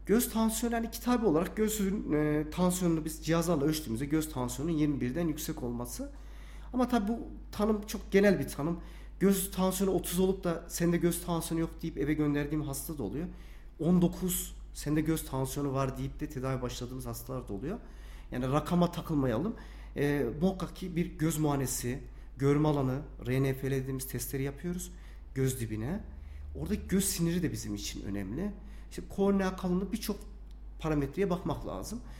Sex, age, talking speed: male, 40-59, 155 wpm